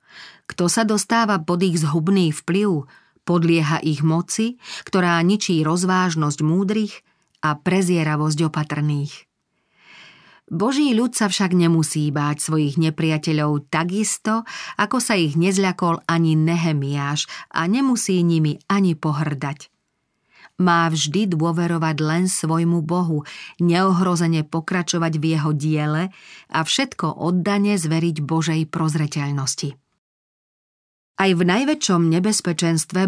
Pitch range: 155-190 Hz